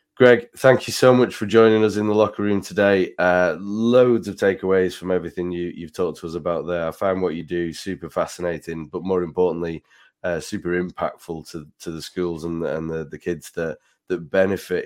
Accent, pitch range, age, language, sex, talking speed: British, 85-100 Hz, 20-39, English, male, 210 wpm